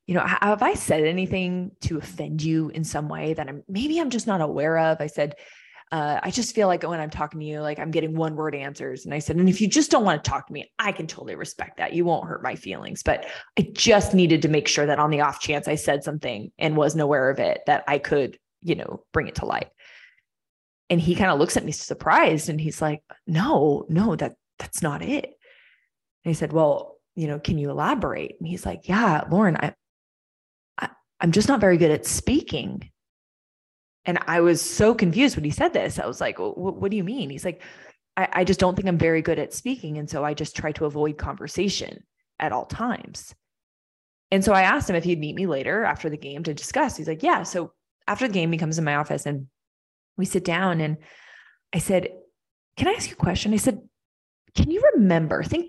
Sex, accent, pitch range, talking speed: female, American, 150-195 Hz, 230 wpm